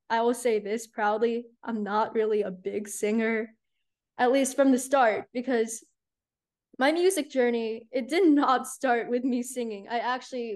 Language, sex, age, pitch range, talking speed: English, female, 10-29, 215-255 Hz, 165 wpm